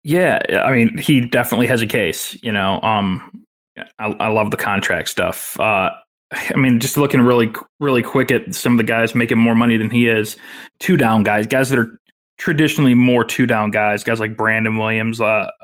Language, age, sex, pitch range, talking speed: English, 20-39, male, 110-125 Hz, 195 wpm